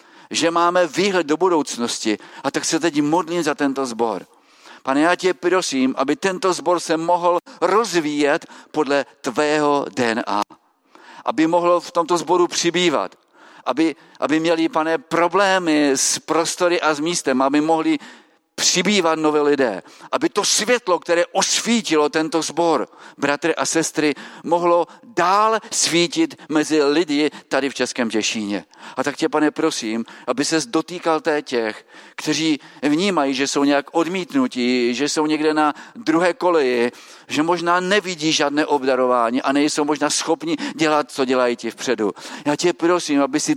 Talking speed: 145 wpm